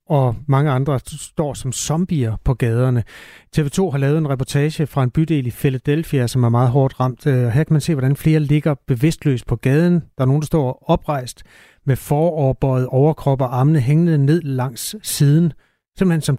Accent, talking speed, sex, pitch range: native, 180 wpm, male, 130-160 Hz